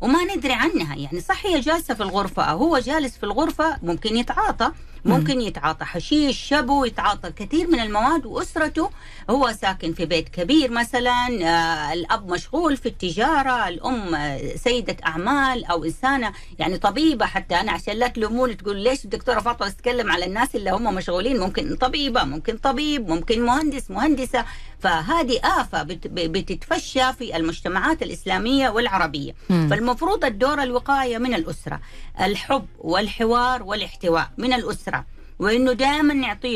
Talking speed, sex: 135 wpm, female